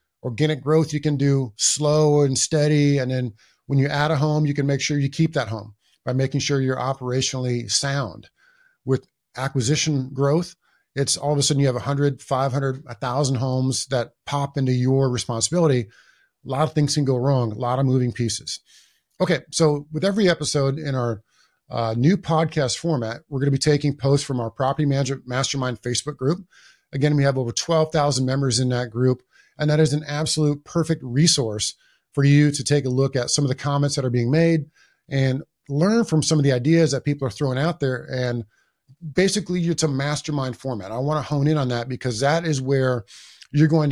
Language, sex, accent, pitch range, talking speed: English, male, American, 130-150 Hz, 200 wpm